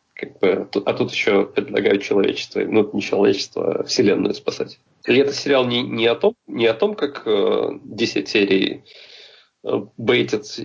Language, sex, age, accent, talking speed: Russian, male, 20-39, native, 165 wpm